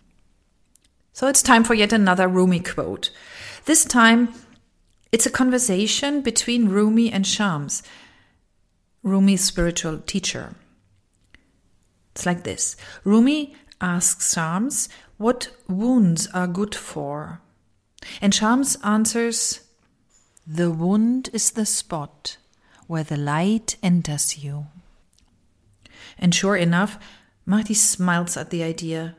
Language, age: English, 40-59